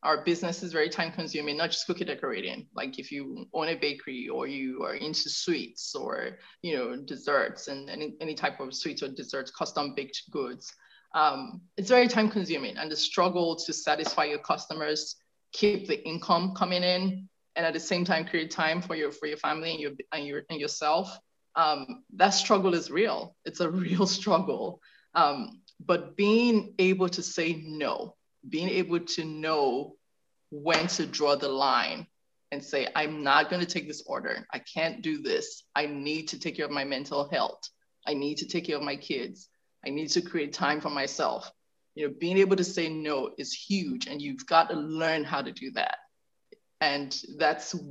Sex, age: female, 20-39